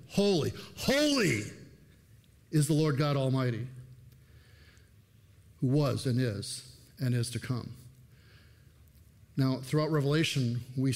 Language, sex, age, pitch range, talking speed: English, male, 50-69, 115-135 Hz, 105 wpm